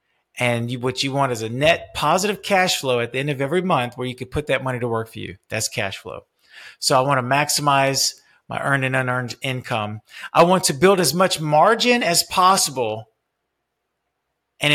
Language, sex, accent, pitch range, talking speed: English, male, American, 125-165 Hz, 205 wpm